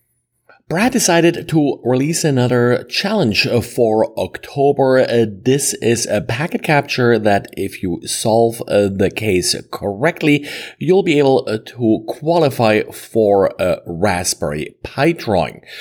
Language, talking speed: English, 115 wpm